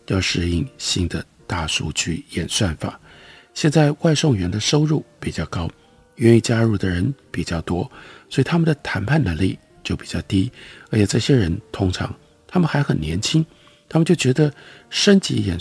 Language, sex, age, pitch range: Chinese, male, 50-69, 95-150 Hz